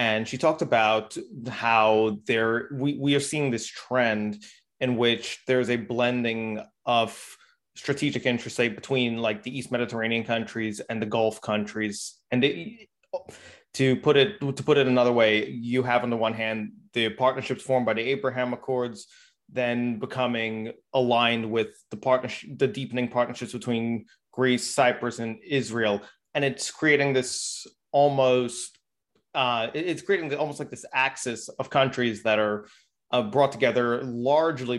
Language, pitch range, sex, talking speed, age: Turkish, 115-130 Hz, male, 150 wpm, 20-39